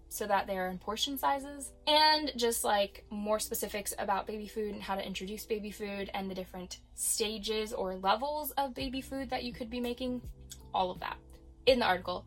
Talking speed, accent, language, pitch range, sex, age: 195 wpm, American, English, 205-260 Hz, female, 10-29